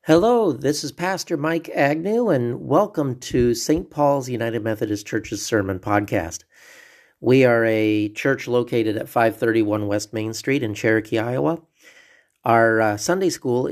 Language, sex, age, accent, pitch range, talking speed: English, male, 40-59, American, 110-140 Hz, 145 wpm